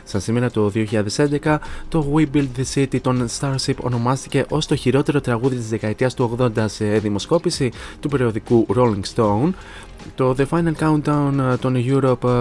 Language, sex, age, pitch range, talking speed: Greek, male, 20-39, 110-130 Hz, 155 wpm